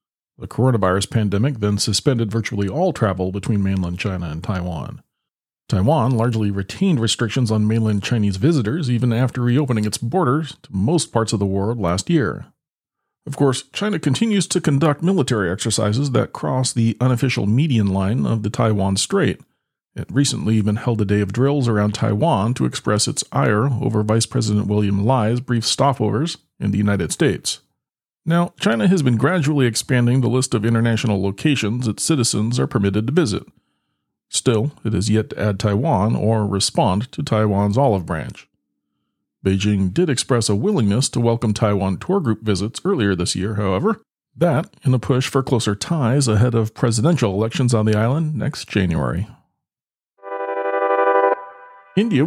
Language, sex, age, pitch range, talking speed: English, male, 40-59, 105-140 Hz, 160 wpm